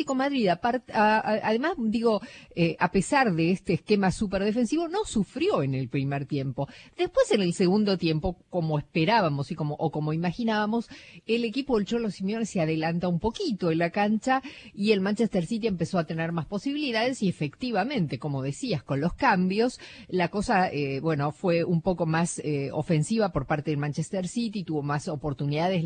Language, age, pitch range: Spanish, 40-59, 150-225 Hz